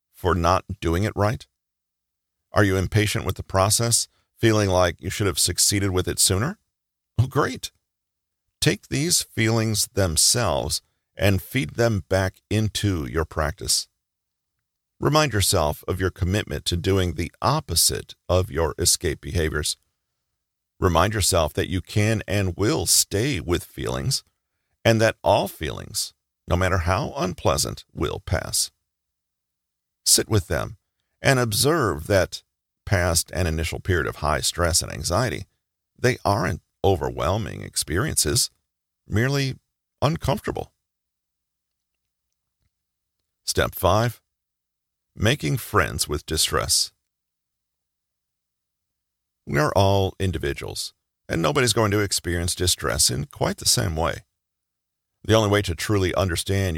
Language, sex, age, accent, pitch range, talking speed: English, male, 40-59, American, 80-105 Hz, 120 wpm